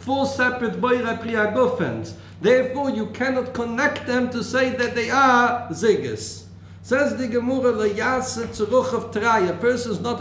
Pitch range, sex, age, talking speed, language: 195-250 Hz, male, 50-69, 125 wpm, English